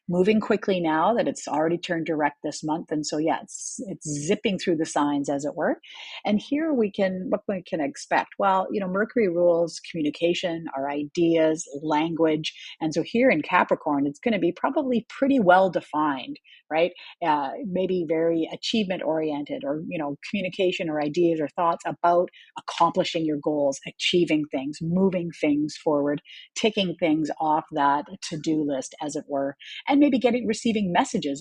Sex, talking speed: female, 170 wpm